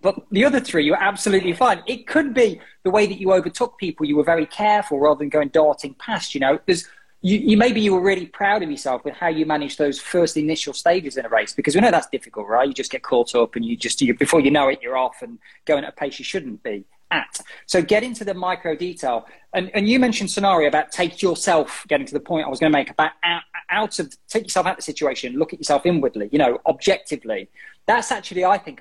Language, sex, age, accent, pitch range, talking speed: English, male, 20-39, British, 150-215 Hz, 250 wpm